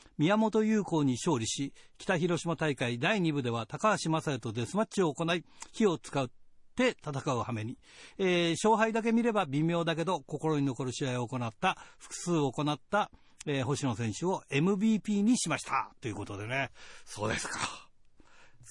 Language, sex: Japanese, male